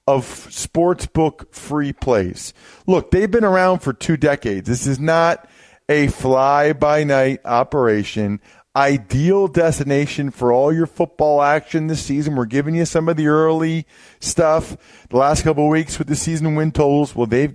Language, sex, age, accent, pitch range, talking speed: English, male, 40-59, American, 120-160 Hz, 155 wpm